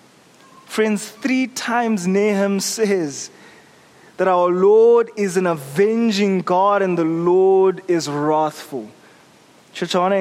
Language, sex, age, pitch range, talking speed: English, male, 20-39, 180-235 Hz, 125 wpm